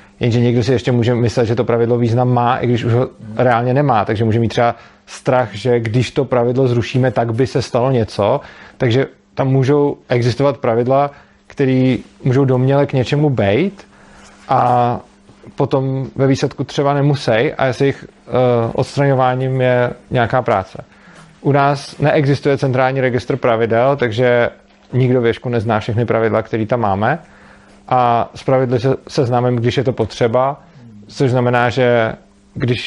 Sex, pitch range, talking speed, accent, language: male, 120-135 Hz, 150 wpm, native, Czech